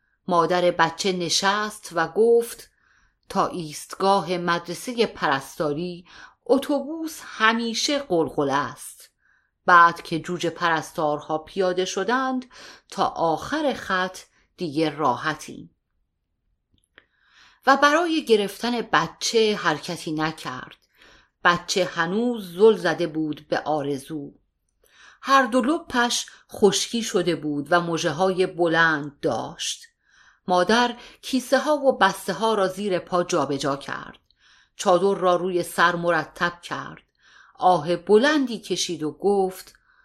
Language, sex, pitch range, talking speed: Persian, female, 165-225 Hz, 105 wpm